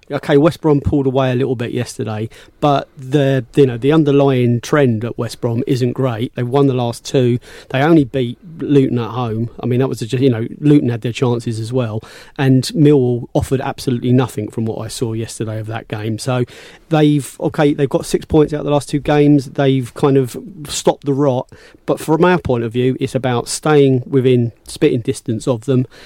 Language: English